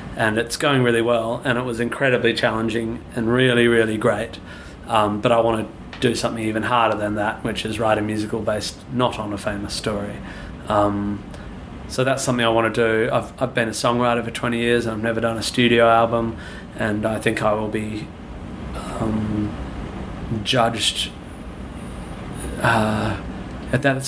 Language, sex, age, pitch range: English, male, 20-39, 110-120 Hz